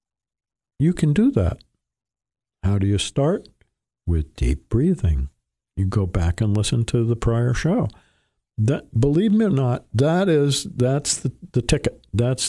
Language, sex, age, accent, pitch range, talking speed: English, male, 60-79, American, 110-145 Hz, 155 wpm